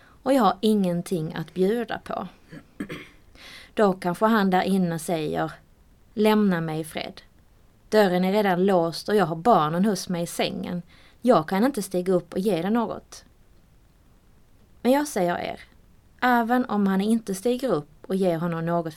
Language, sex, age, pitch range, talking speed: English, female, 20-39, 175-220 Hz, 160 wpm